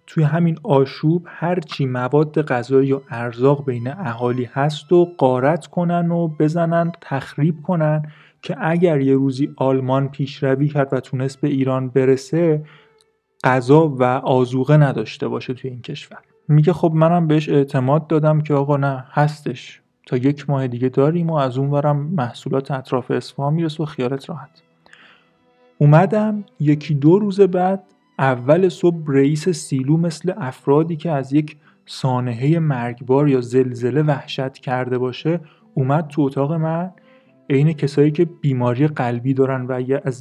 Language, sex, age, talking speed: Persian, male, 30-49, 145 wpm